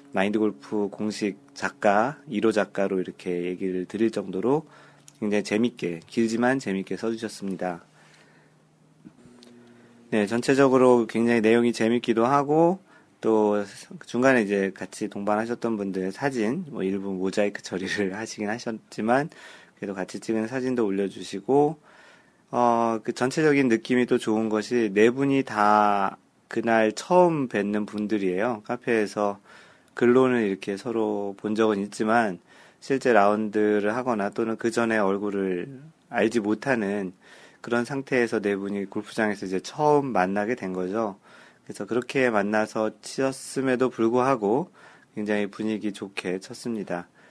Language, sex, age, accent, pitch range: Korean, male, 30-49, native, 100-120 Hz